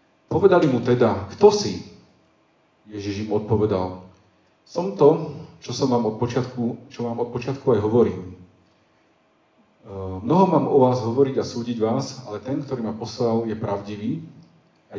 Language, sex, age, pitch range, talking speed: Slovak, male, 40-59, 100-130 Hz, 150 wpm